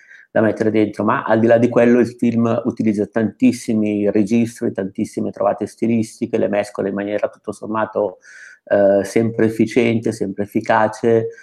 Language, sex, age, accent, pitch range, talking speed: Italian, male, 50-69, native, 105-120 Hz, 145 wpm